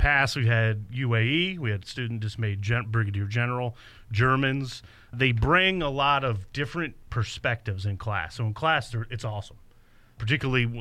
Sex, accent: male, American